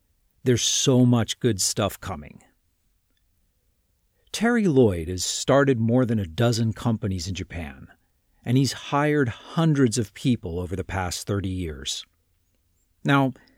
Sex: male